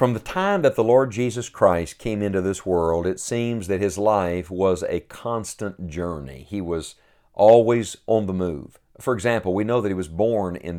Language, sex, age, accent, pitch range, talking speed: English, male, 50-69, American, 95-120 Hz, 200 wpm